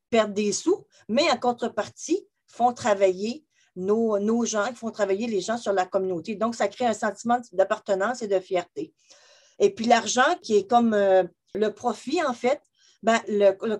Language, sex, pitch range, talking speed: French, female, 195-245 Hz, 175 wpm